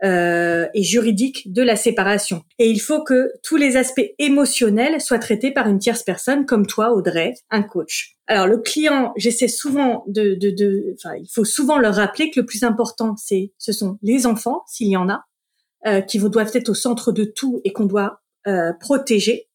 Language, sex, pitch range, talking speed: English, female, 205-260 Hz, 205 wpm